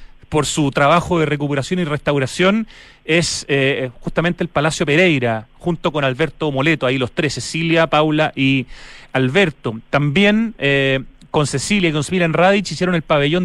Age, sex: 30-49, male